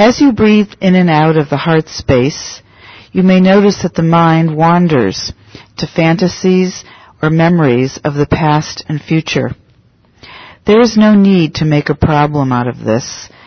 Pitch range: 140-180 Hz